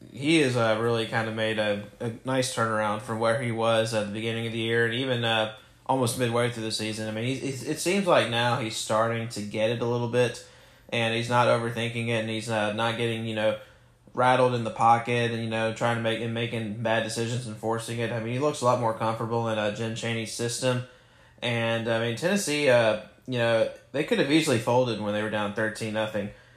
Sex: male